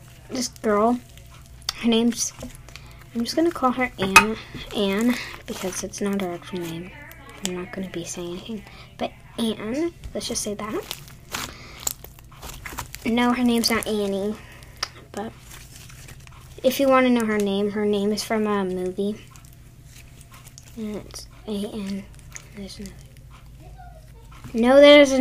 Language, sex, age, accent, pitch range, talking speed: English, female, 10-29, American, 190-245 Hz, 130 wpm